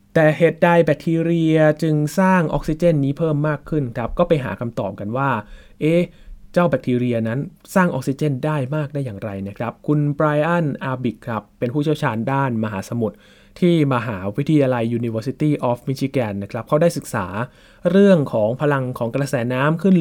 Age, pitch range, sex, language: 20-39, 120-155 Hz, male, Thai